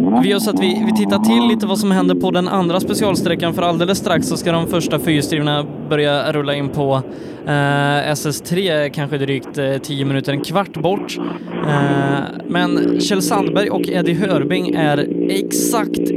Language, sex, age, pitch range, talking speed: Swedish, male, 20-39, 140-185 Hz, 175 wpm